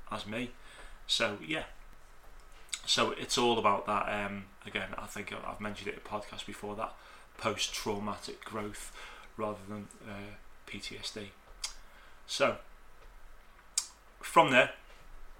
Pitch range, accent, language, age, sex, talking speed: 105-120 Hz, British, English, 30-49, male, 115 wpm